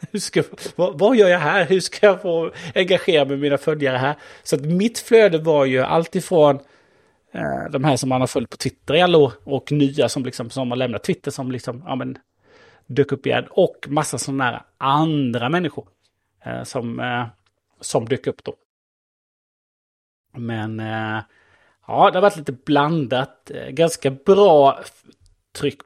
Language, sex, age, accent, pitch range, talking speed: Swedish, male, 30-49, Norwegian, 125-155 Hz, 160 wpm